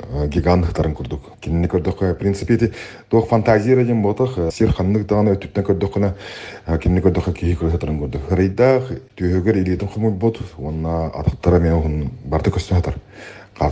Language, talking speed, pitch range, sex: Russian, 85 wpm, 80-105 Hz, male